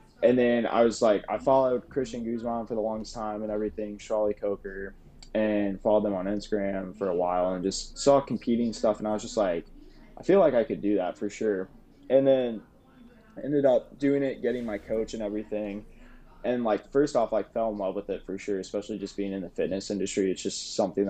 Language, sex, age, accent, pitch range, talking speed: English, male, 20-39, American, 100-120 Hz, 230 wpm